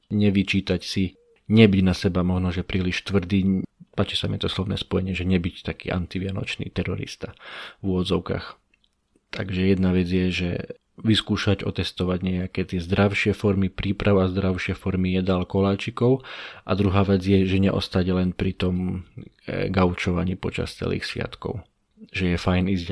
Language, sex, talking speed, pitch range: Slovak, male, 145 wpm, 90-100 Hz